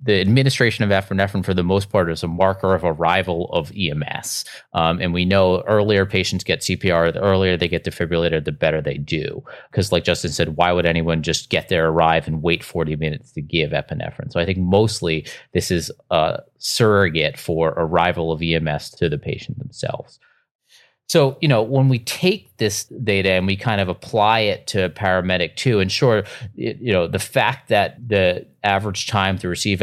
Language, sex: English, male